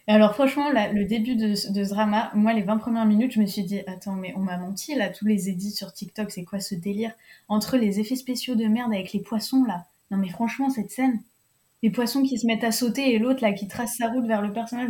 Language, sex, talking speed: French, female, 265 wpm